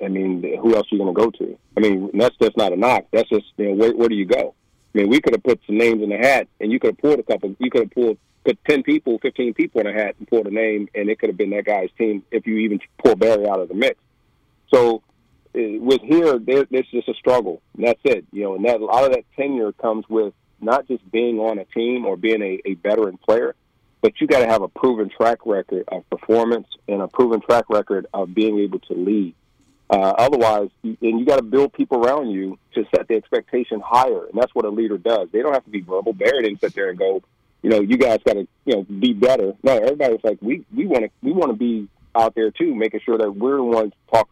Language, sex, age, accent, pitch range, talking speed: English, male, 40-59, American, 105-130 Hz, 265 wpm